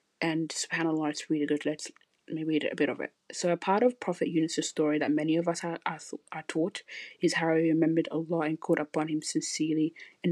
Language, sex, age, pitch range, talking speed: English, female, 20-39, 155-180 Hz, 225 wpm